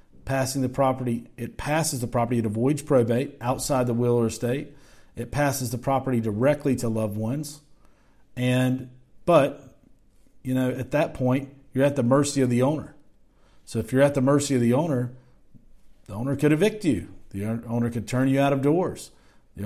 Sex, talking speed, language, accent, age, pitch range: male, 185 wpm, English, American, 40-59, 115-140 Hz